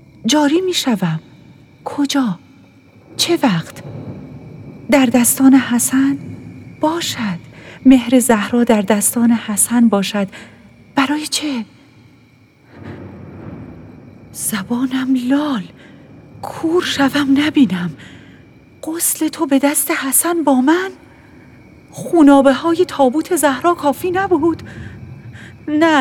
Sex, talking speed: female, 85 wpm